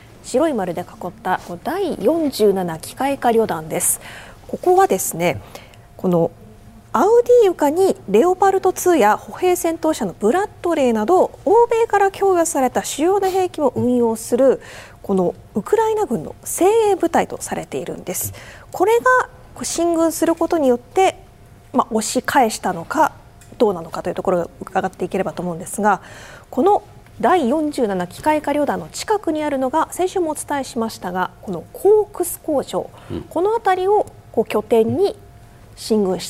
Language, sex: Japanese, female